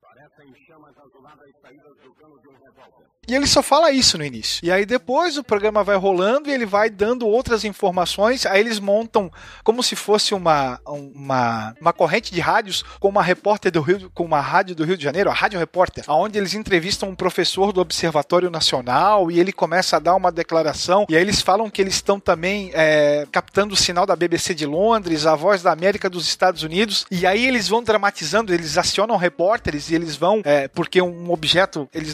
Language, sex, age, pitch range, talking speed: Portuguese, male, 40-59, 165-210 Hz, 185 wpm